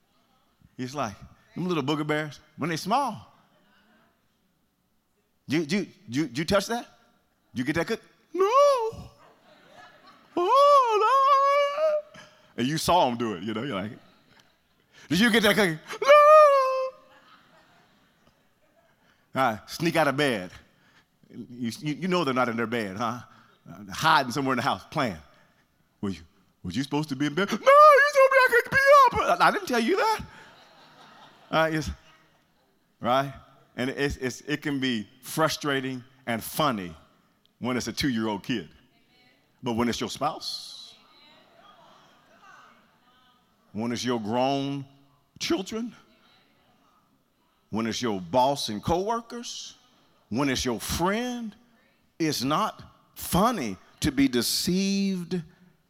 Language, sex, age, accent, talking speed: English, male, 40-59, American, 135 wpm